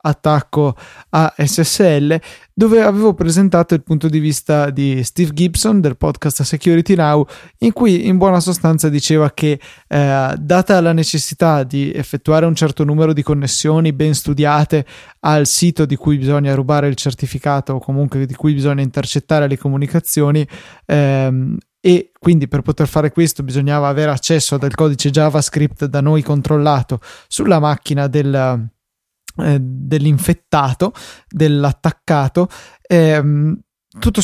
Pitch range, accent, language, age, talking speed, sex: 140-160 Hz, native, Italian, 20-39, 130 wpm, male